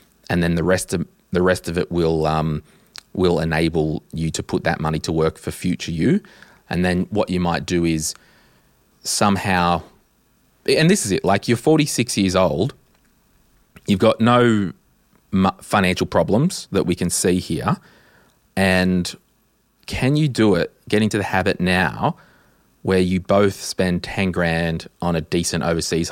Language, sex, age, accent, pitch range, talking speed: English, male, 30-49, Australian, 85-100 Hz, 160 wpm